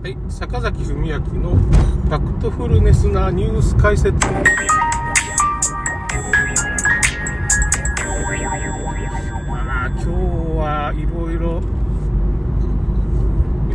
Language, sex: Japanese, male